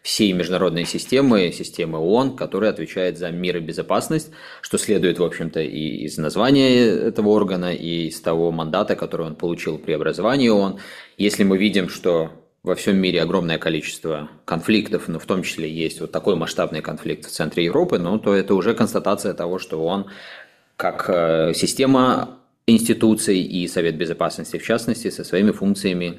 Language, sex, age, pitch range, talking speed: Russian, male, 20-39, 85-105 Hz, 165 wpm